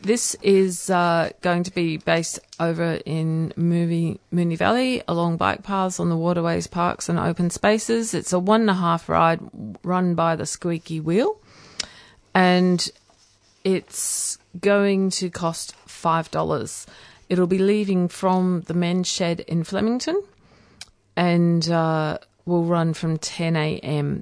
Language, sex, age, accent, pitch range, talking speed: English, female, 40-59, Australian, 155-180 Hz, 130 wpm